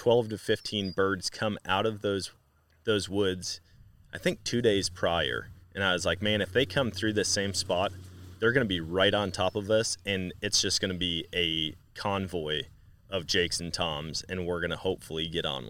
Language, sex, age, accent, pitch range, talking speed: English, male, 30-49, American, 85-100 Hz, 210 wpm